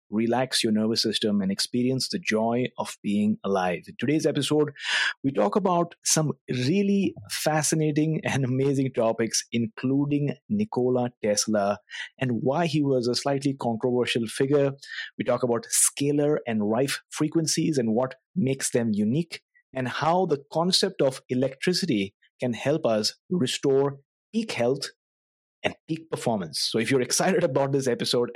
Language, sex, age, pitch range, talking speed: English, male, 30-49, 120-155 Hz, 145 wpm